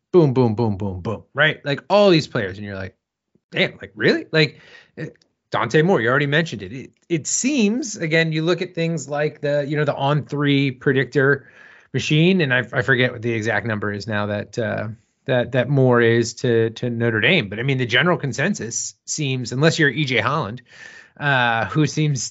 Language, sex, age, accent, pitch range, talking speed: English, male, 30-49, American, 115-150 Hz, 200 wpm